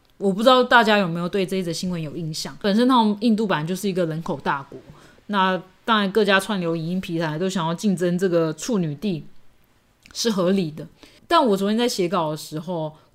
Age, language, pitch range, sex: 20-39, Chinese, 170-220 Hz, female